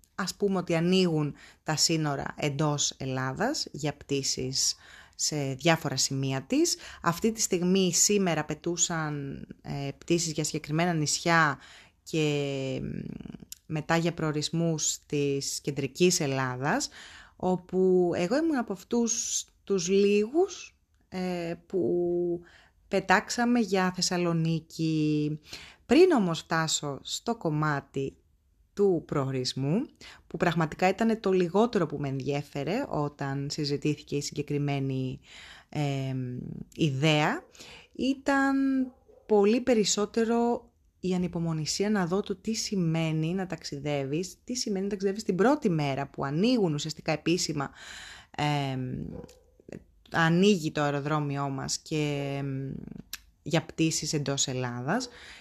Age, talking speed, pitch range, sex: 30-49, 105 wpm, 145-200 Hz, female